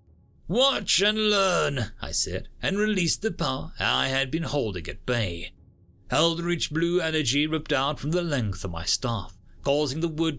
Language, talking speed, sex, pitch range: English, 170 wpm, male, 110-180 Hz